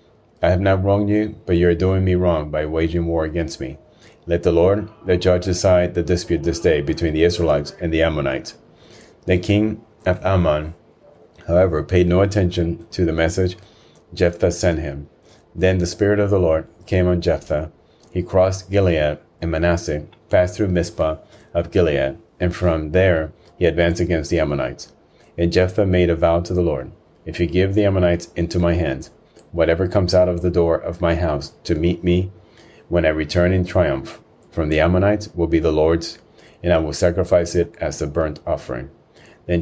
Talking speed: 185 wpm